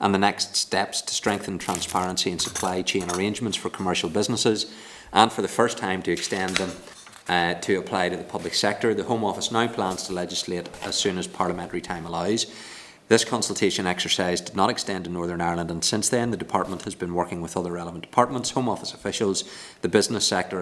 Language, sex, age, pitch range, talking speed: English, male, 30-49, 85-105 Hz, 200 wpm